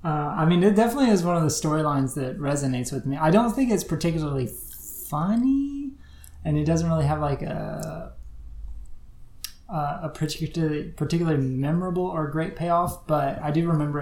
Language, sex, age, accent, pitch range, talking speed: English, male, 20-39, American, 135-170 Hz, 165 wpm